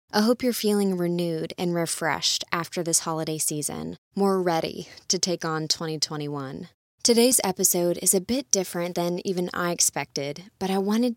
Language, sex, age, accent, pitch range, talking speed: English, female, 20-39, American, 165-200 Hz, 160 wpm